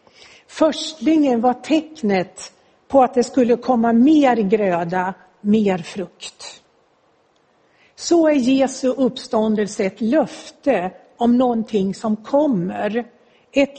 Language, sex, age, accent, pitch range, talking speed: Swedish, female, 60-79, native, 200-260 Hz, 100 wpm